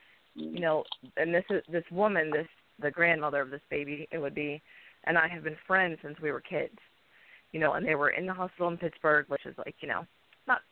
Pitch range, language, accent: 150-175 Hz, English, American